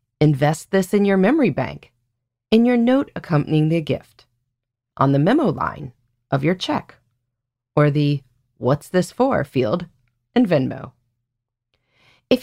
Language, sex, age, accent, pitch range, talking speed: English, female, 30-49, American, 125-190 Hz, 135 wpm